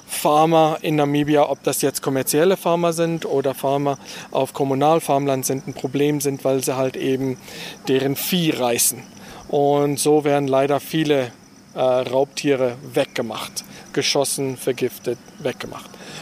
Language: German